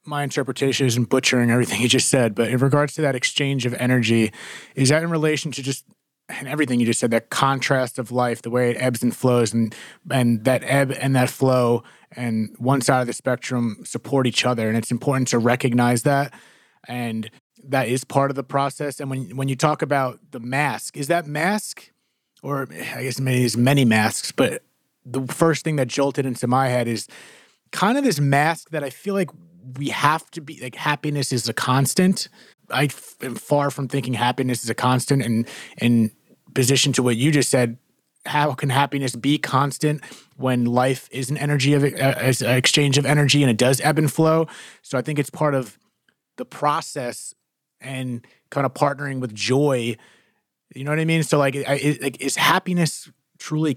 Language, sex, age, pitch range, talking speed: English, male, 30-49, 125-145 Hz, 200 wpm